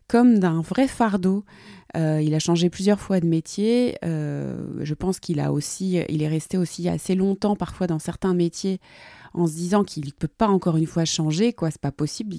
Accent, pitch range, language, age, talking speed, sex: French, 155-200 Hz, French, 30-49, 210 wpm, female